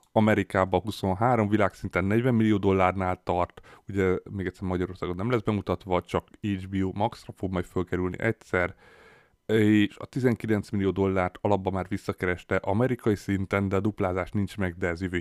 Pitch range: 90-105 Hz